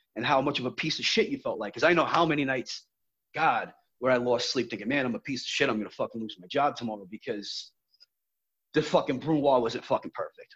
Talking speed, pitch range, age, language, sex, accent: 245 wpm, 115-160 Hz, 30-49, English, male, American